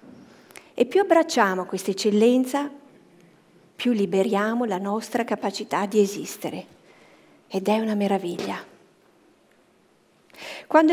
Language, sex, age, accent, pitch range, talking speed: Italian, female, 50-69, native, 195-265 Hz, 95 wpm